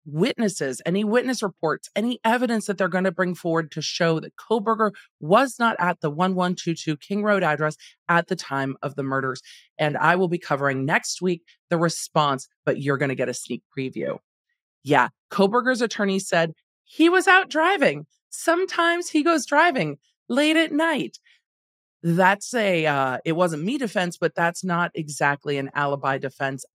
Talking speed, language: 170 wpm, English